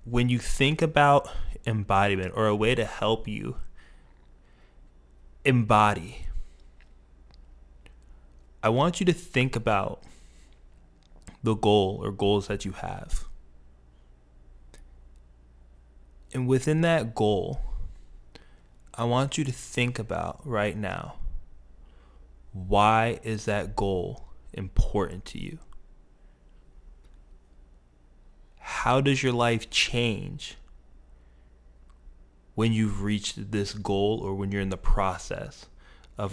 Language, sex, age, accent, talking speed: English, male, 20-39, American, 100 wpm